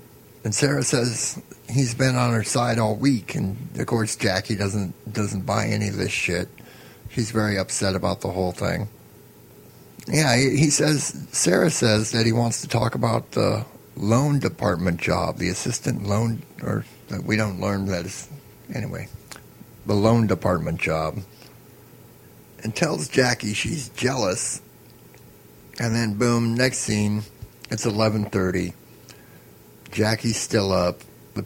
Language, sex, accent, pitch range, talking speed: English, male, American, 95-115 Hz, 140 wpm